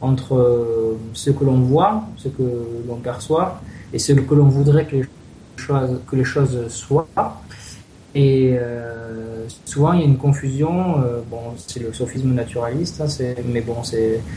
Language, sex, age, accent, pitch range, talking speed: French, male, 20-39, French, 125-150 Hz, 165 wpm